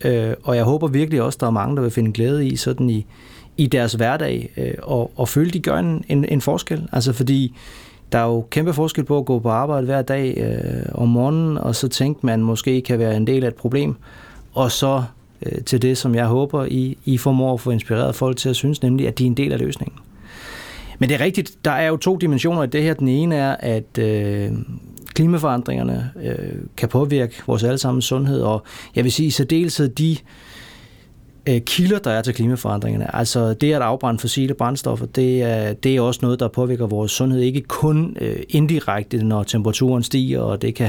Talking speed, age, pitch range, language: 220 wpm, 30-49, 115-140 Hz, Danish